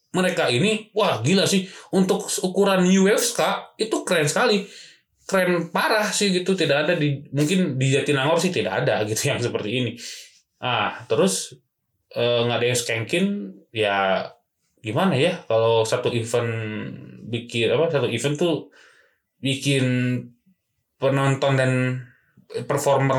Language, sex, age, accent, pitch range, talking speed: Indonesian, male, 20-39, native, 120-185 Hz, 130 wpm